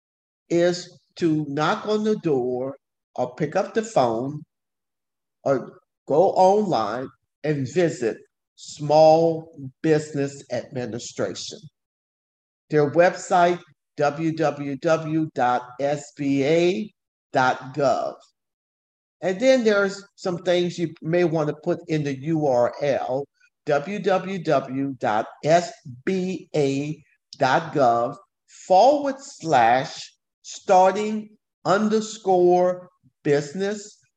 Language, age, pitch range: English, 50-69, 140-185 Hz